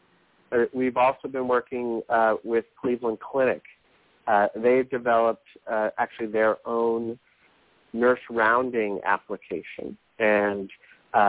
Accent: American